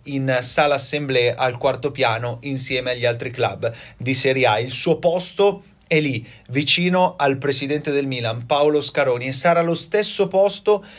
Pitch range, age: 135-175 Hz, 30-49